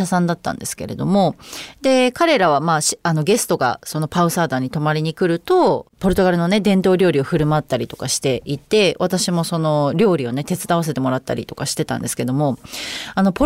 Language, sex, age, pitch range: Japanese, female, 30-49, 160-265 Hz